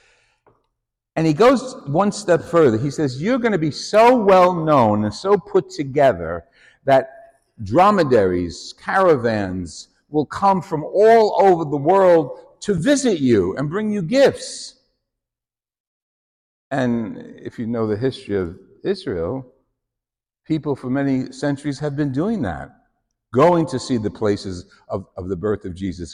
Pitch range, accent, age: 105-170 Hz, American, 60-79